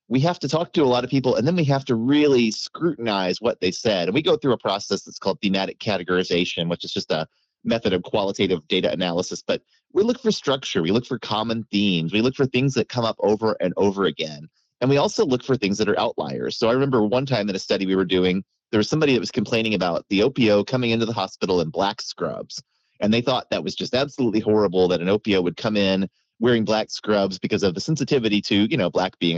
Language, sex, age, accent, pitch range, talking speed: English, male, 30-49, American, 95-130 Hz, 245 wpm